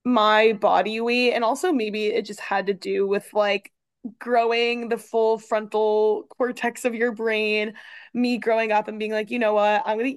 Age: 20-39